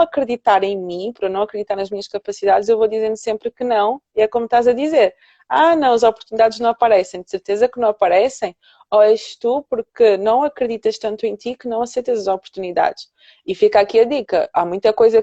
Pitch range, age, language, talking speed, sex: 195-240 Hz, 20-39, Portuguese, 215 wpm, female